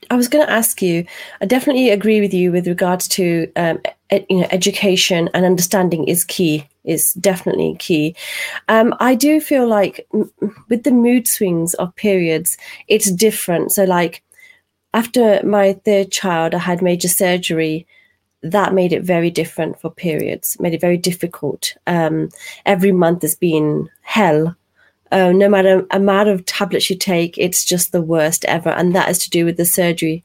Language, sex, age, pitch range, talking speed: Punjabi, female, 30-49, 170-205 Hz, 175 wpm